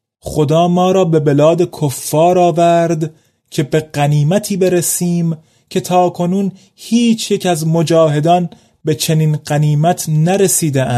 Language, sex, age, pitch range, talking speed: Persian, male, 30-49, 130-175 Hz, 120 wpm